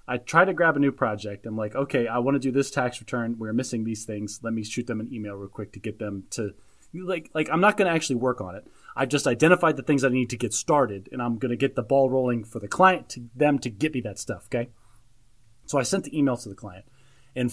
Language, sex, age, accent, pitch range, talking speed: English, male, 30-49, American, 110-140 Hz, 275 wpm